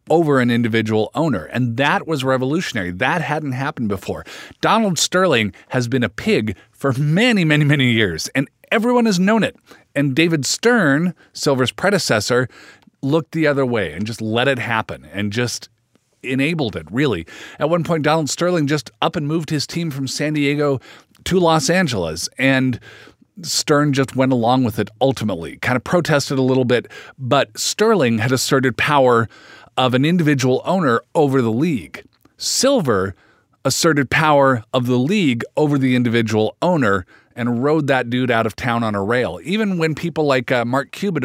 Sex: male